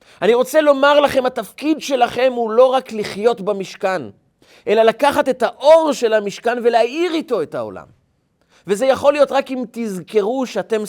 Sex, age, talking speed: male, 40-59, 155 wpm